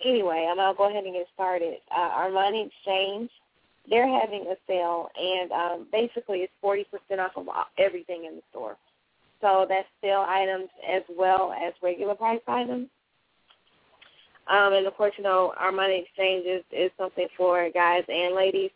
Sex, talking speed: female, 175 wpm